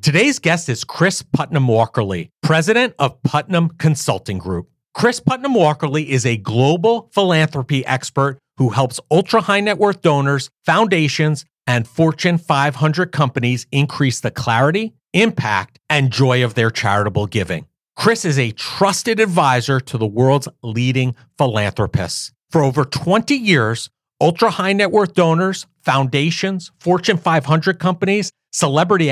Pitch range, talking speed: 130-175 Hz, 125 wpm